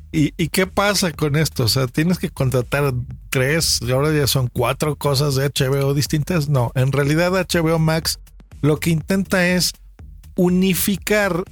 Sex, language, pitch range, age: male, Spanish, 130-170 Hz, 50-69